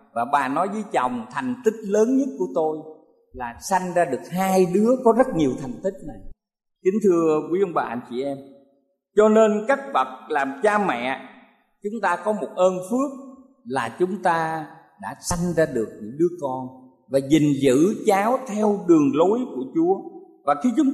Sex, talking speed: male, 190 wpm